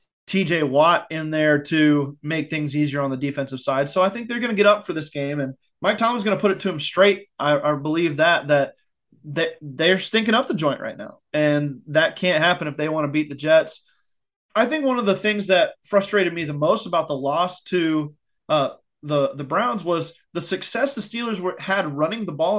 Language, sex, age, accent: English, male, 20-39, American